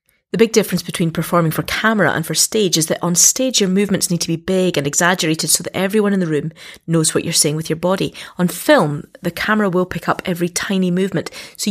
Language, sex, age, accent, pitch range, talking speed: English, female, 30-49, British, 165-205 Hz, 235 wpm